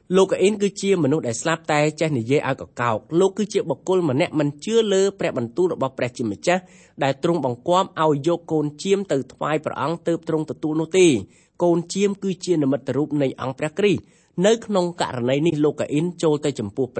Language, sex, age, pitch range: English, male, 30-49, 135-180 Hz